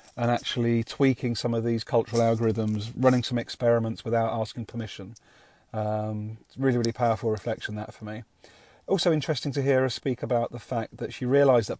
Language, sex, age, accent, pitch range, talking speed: English, male, 40-59, British, 110-125 Hz, 190 wpm